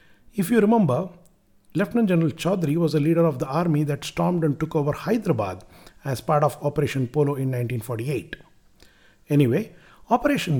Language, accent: English, Indian